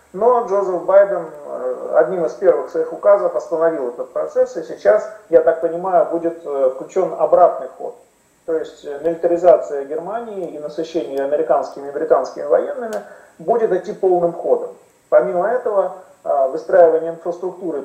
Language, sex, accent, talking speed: Russian, male, native, 130 wpm